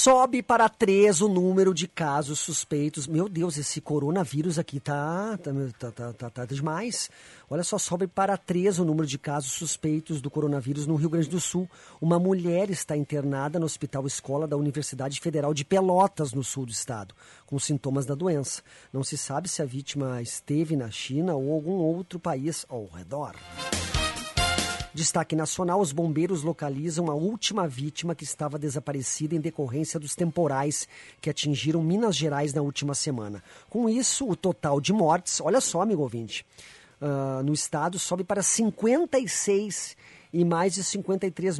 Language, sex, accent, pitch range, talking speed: Portuguese, male, Brazilian, 140-180 Hz, 155 wpm